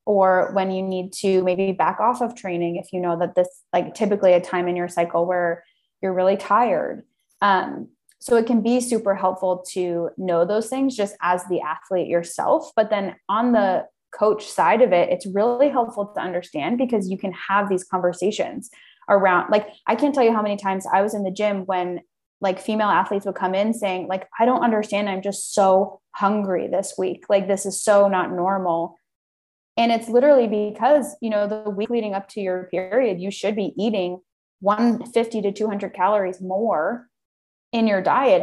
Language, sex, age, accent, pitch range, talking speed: English, female, 20-39, American, 185-220 Hz, 195 wpm